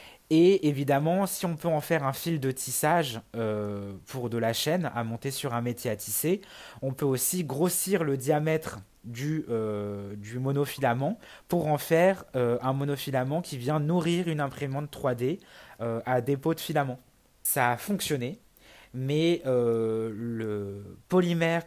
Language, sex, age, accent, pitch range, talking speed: French, male, 20-39, French, 120-150 Hz, 160 wpm